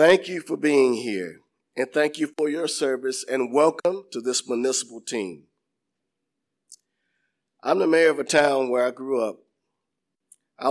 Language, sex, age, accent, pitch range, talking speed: English, male, 50-69, American, 125-175 Hz, 155 wpm